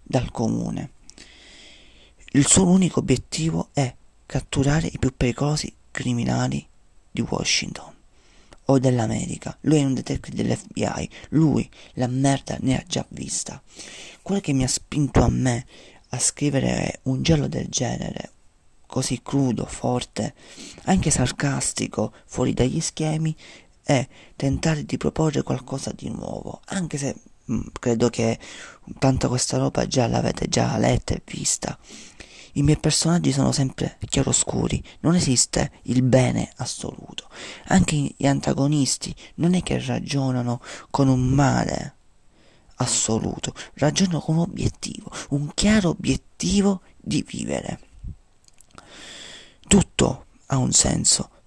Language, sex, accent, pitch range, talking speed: Italian, male, native, 125-155 Hz, 120 wpm